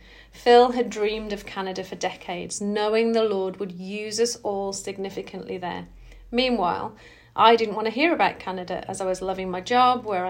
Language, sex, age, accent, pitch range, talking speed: English, female, 40-59, British, 180-230 Hz, 180 wpm